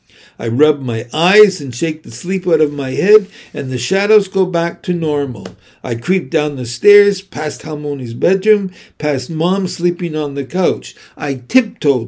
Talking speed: 175 wpm